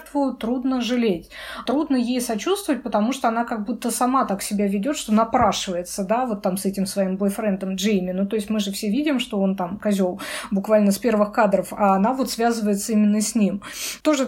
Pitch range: 205-260 Hz